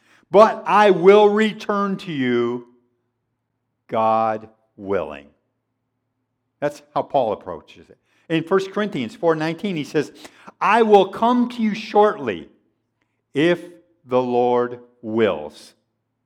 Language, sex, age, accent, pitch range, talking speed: English, male, 50-69, American, 125-205 Hz, 105 wpm